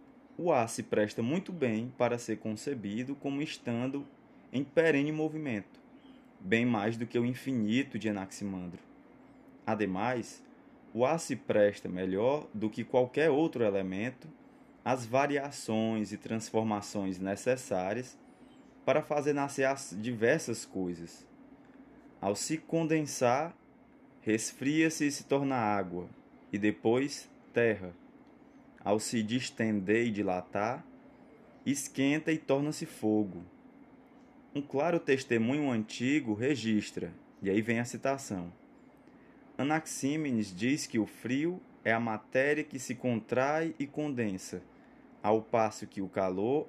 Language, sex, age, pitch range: Portuguese, male, 20-39, 105-150 Hz